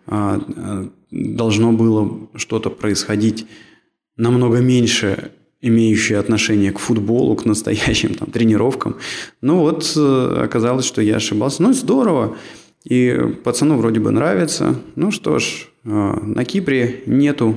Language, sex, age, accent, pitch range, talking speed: Russian, male, 20-39, native, 100-120 Hz, 115 wpm